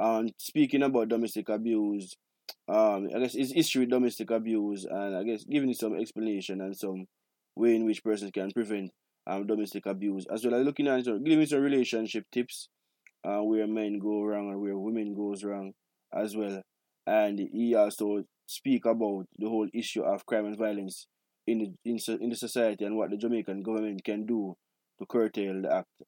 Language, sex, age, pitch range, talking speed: English, male, 20-39, 100-120 Hz, 185 wpm